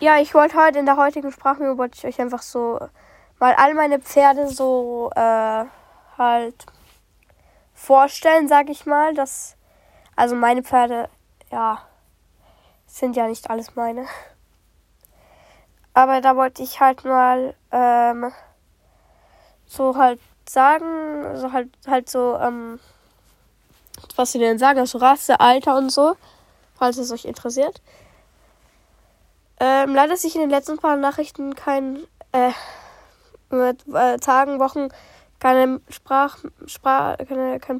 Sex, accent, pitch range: female, German, 245-280 Hz